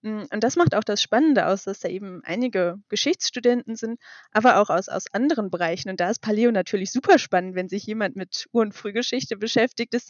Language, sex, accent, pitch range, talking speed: German, female, German, 190-235 Hz, 210 wpm